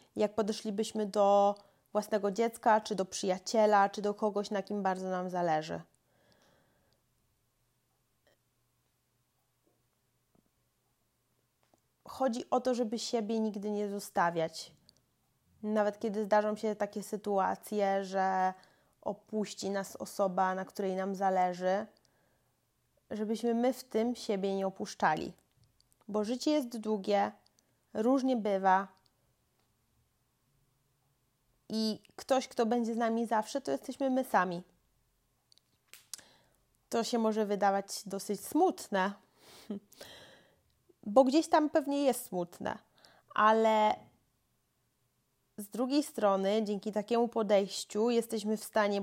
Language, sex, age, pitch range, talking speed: Polish, female, 20-39, 190-220 Hz, 105 wpm